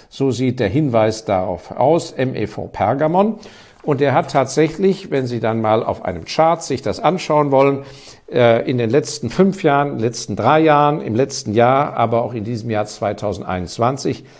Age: 50-69